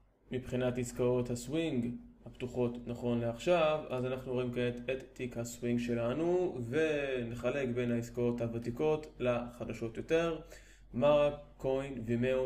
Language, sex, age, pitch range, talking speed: Hebrew, male, 20-39, 120-135 Hz, 110 wpm